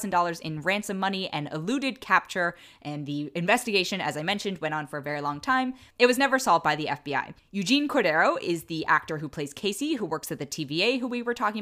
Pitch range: 150-245 Hz